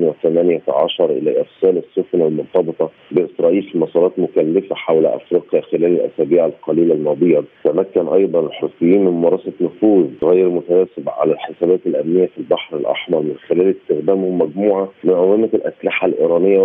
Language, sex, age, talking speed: Arabic, male, 40-59, 135 wpm